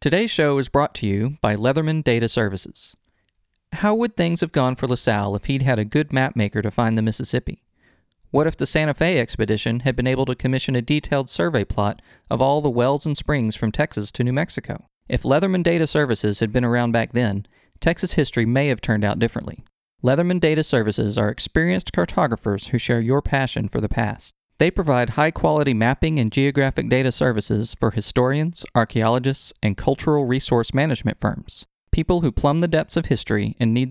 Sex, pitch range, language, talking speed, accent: male, 110-145 Hz, English, 190 wpm, American